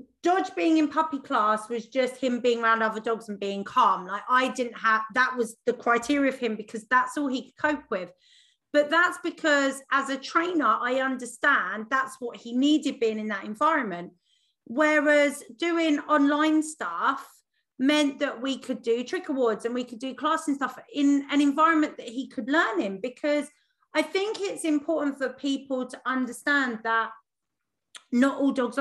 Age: 30-49